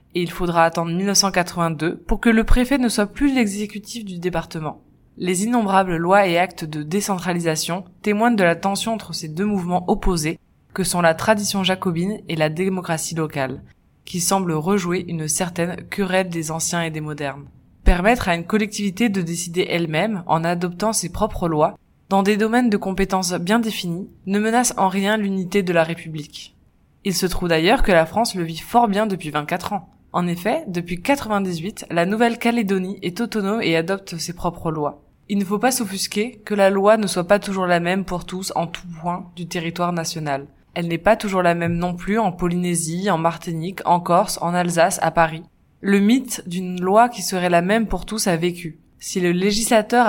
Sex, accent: female, French